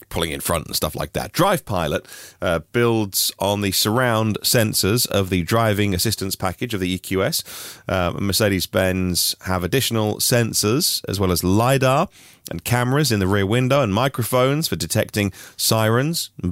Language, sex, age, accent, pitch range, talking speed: English, male, 30-49, British, 95-130 Hz, 155 wpm